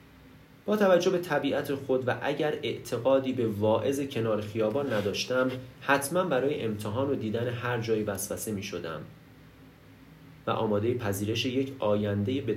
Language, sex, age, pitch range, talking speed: Persian, male, 30-49, 110-140 Hz, 145 wpm